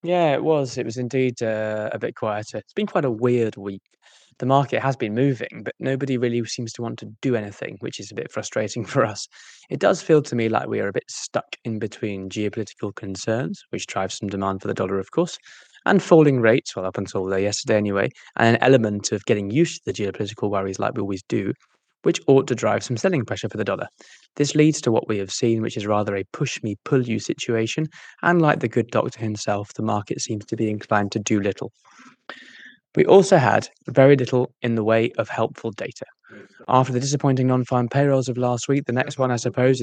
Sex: male